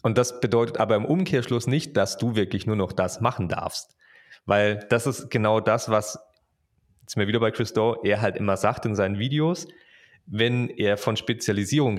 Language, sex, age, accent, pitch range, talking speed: German, male, 30-49, German, 100-125 Hz, 185 wpm